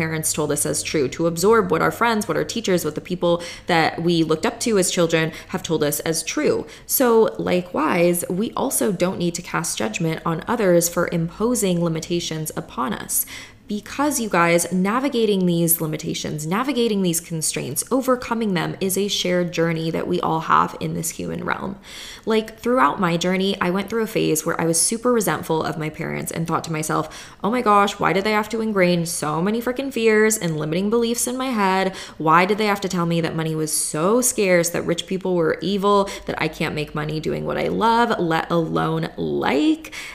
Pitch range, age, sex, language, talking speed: 165-220 Hz, 20-39, female, English, 205 wpm